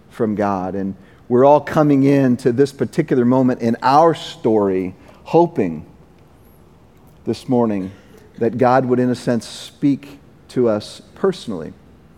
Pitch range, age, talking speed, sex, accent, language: 120-145 Hz, 40-59, 135 wpm, male, American, English